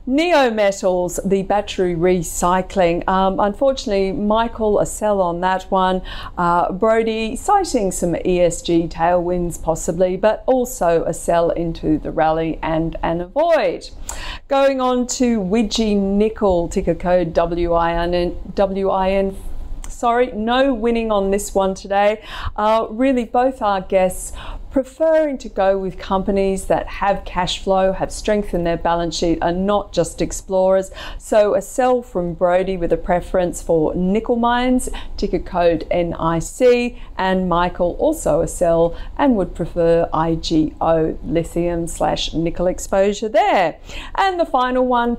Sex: female